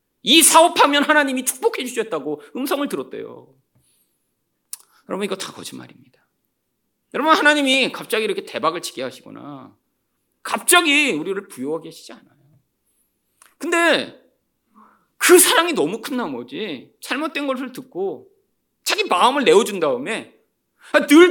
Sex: male